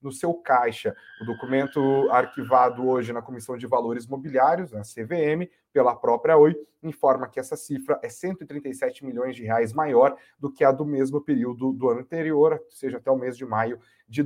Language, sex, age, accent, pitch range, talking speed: Portuguese, male, 30-49, Brazilian, 120-155 Hz, 185 wpm